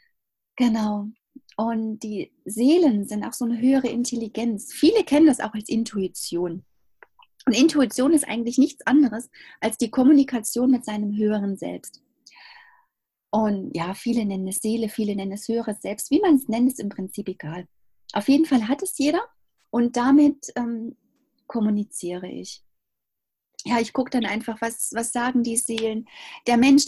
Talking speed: 160 wpm